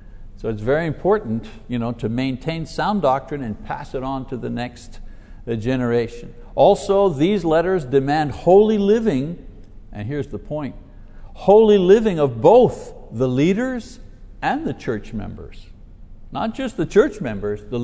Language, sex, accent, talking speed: English, male, American, 140 wpm